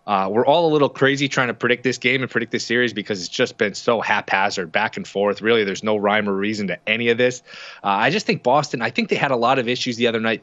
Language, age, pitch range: English, 20-39, 115-135 Hz